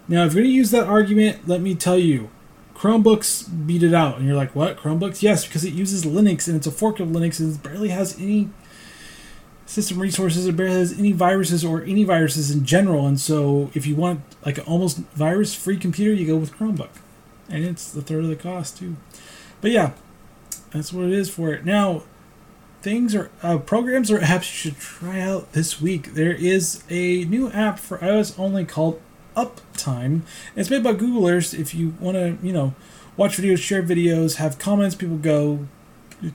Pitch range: 155-190 Hz